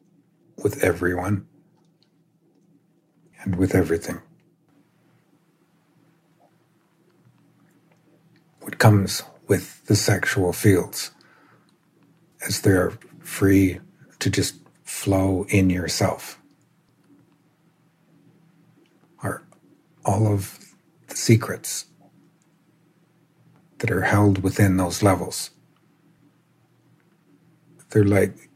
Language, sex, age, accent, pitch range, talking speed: English, male, 60-79, American, 105-165 Hz, 70 wpm